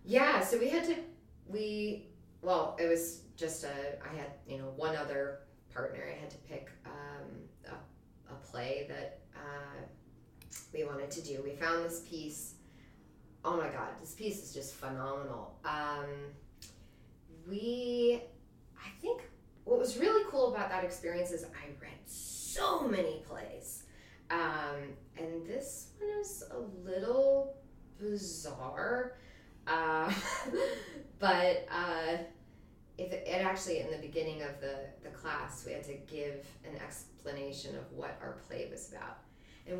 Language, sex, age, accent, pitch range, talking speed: English, female, 20-39, American, 140-185 Hz, 145 wpm